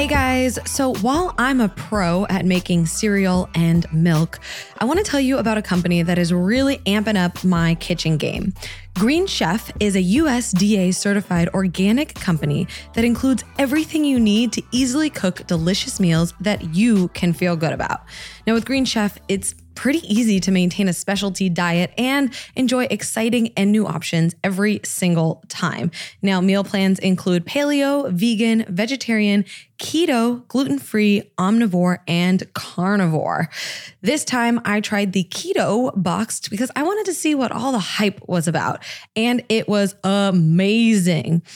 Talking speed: 155 wpm